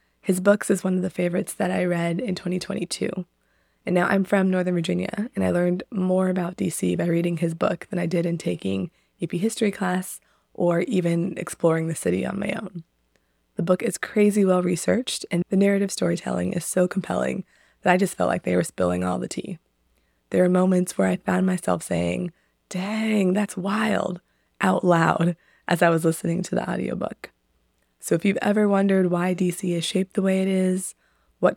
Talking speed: 190 wpm